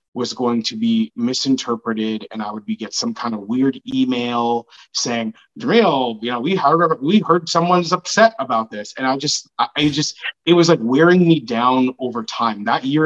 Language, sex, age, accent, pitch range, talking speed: English, male, 30-49, American, 115-150 Hz, 195 wpm